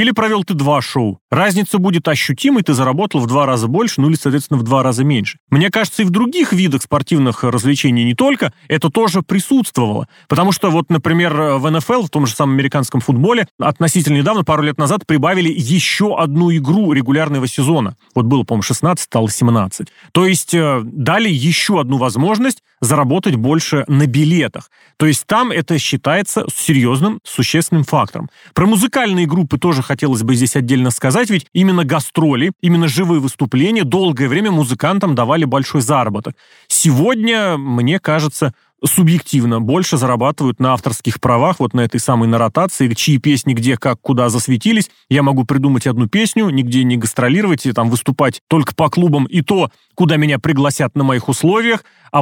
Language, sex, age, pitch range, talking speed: Russian, male, 30-49, 135-175 Hz, 170 wpm